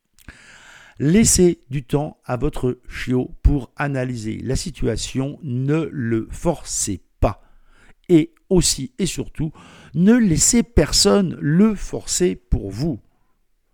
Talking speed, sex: 110 wpm, male